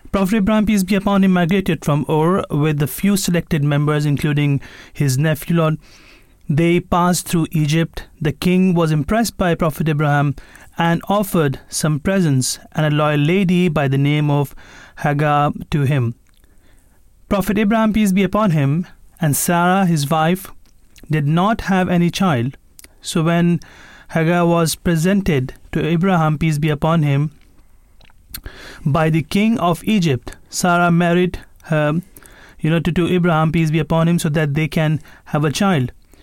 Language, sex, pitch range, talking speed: English, male, 150-185 Hz, 155 wpm